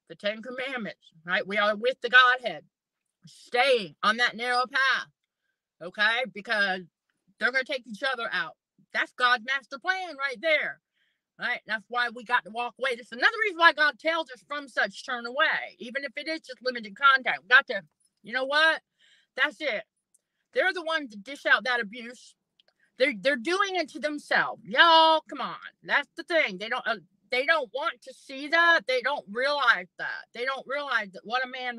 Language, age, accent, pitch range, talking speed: English, 50-69, American, 220-290 Hz, 195 wpm